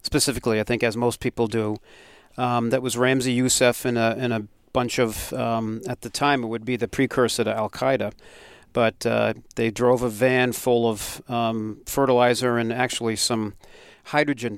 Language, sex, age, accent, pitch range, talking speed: English, male, 40-59, American, 110-125 Hz, 175 wpm